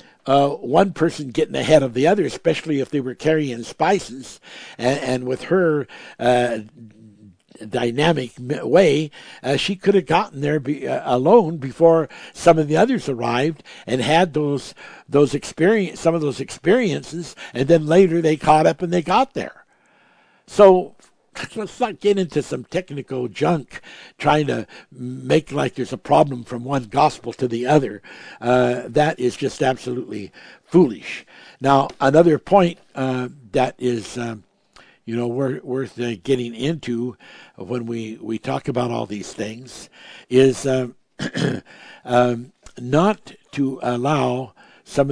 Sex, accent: male, American